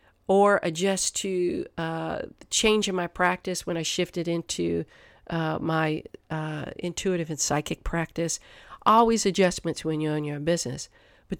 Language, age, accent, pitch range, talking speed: English, 50-69, American, 155-200 Hz, 145 wpm